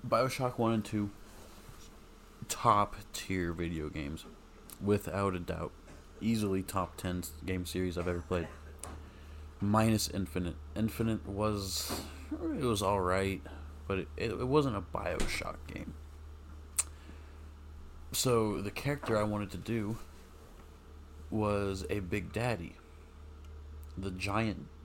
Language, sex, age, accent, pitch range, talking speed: English, male, 30-49, American, 75-100 Hz, 110 wpm